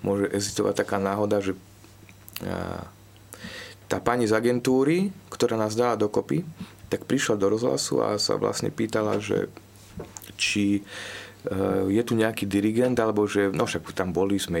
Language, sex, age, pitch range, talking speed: Slovak, male, 30-49, 95-110 Hz, 150 wpm